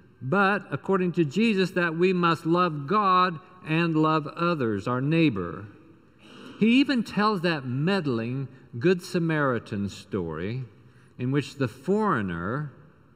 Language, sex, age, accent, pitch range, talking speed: English, male, 50-69, American, 120-185 Hz, 120 wpm